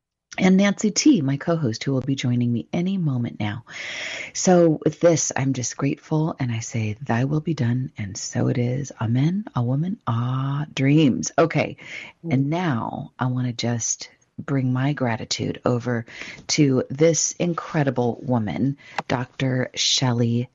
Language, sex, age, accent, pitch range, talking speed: English, female, 40-59, American, 125-155 Hz, 150 wpm